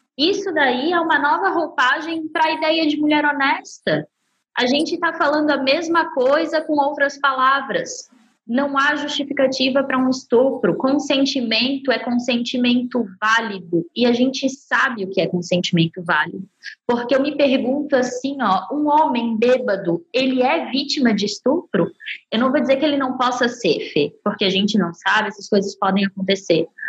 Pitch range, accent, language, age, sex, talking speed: 215-280 Hz, Brazilian, Portuguese, 20-39, female, 165 wpm